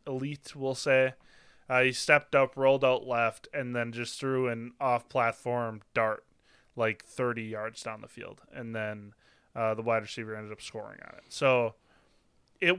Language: English